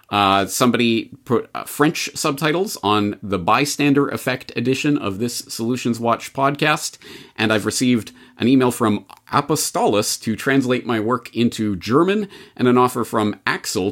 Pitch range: 105-135 Hz